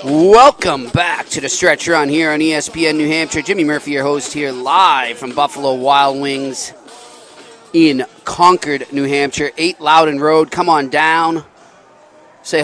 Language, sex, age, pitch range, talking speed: English, male, 30-49, 125-150 Hz, 150 wpm